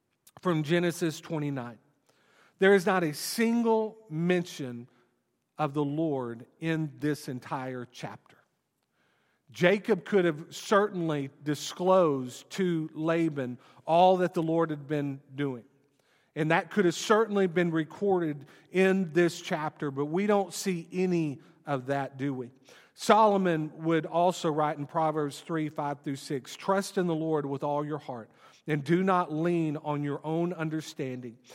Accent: American